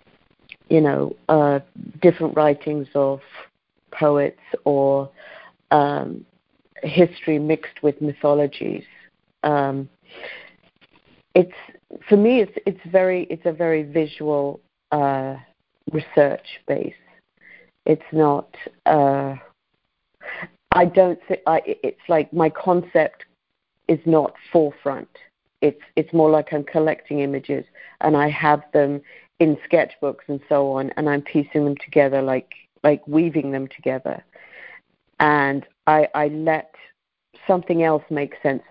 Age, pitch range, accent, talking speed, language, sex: 50-69, 140-160 Hz, British, 115 wpm, English, female